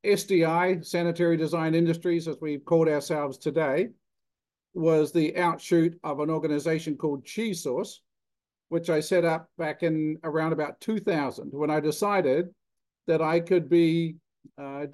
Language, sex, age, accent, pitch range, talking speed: English, male, 50-69, American, 155-185 Hz, 140 wpm